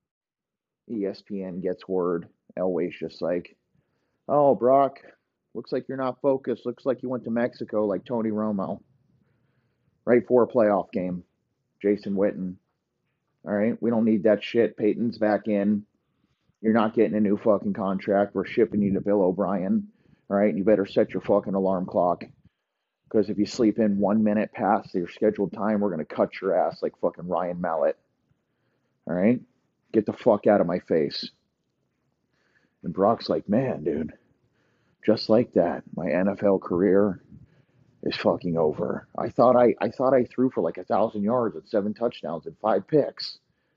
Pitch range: 95-115 Hz